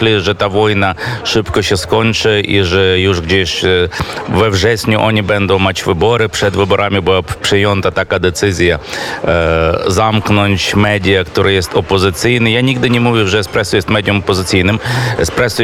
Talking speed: 145 wpm